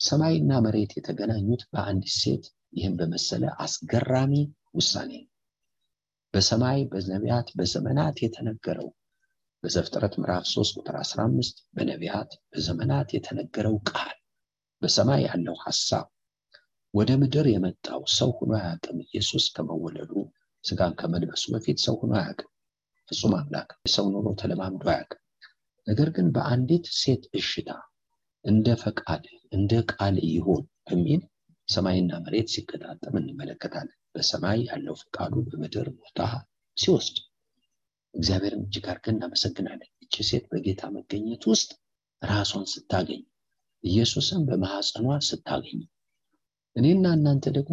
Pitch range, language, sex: 100-145 Hz, English, male